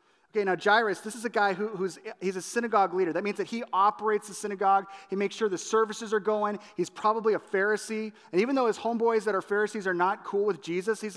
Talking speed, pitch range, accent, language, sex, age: 240 wpm, 185-230 Hz, American, English, male, 30-49